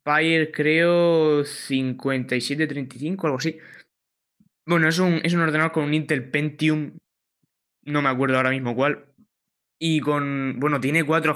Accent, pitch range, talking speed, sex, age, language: Spanish, 130-160 Hz, 130 wpm, male, 20-39, Spanish